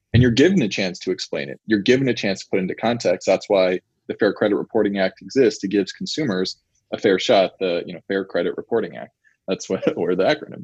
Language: English